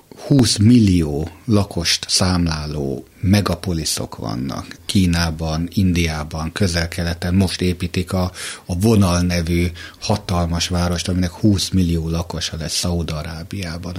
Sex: male